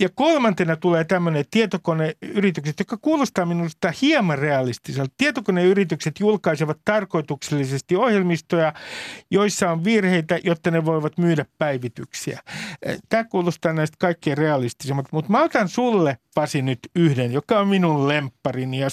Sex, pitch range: male, 145-195 Hz